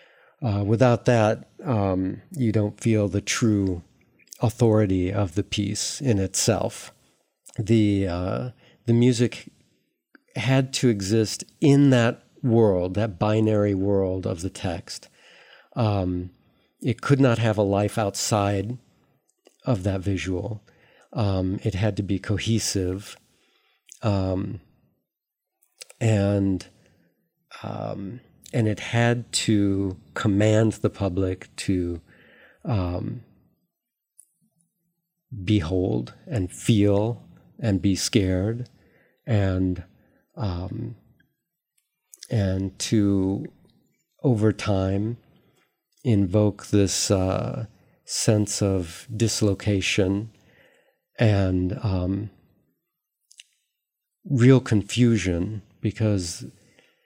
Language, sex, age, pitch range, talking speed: Bulgarian, male, 50-69, 95-115 Hz, 85 wpm